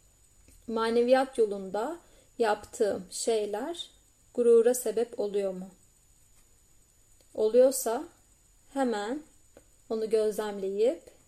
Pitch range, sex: 195-240 Hz, female